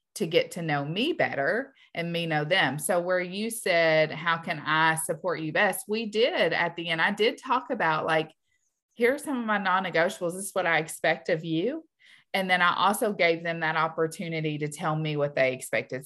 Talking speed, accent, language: 210 wpm, American, English